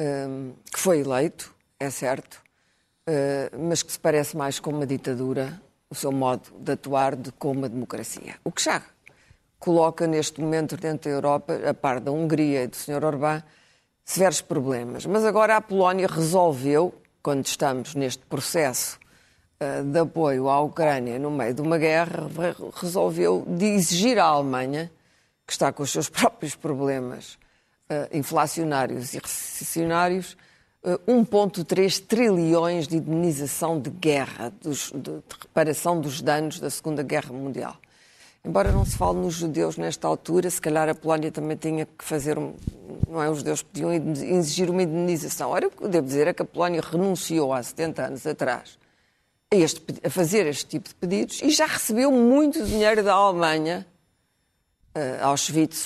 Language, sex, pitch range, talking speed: Portuguese, female, 140-175 Hz, 160 wpm